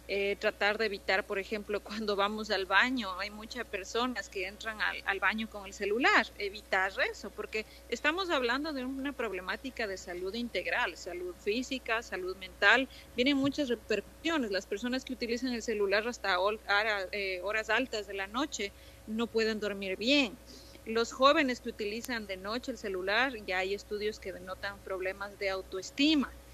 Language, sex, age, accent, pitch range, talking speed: Spanish, female, 30-49, Mexican, 200-250 Hz, 165 wpm